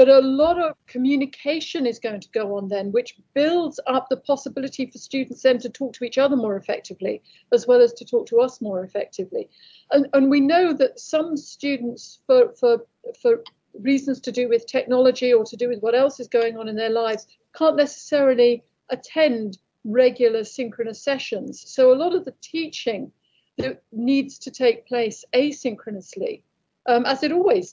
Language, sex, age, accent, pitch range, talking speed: English, female, 50-69, British, 235-295 Hz, 175 wpm